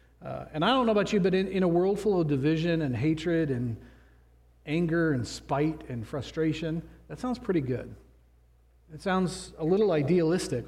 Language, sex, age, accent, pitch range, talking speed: English, male, 40-59, American, 130-180 Hz, 180 wpm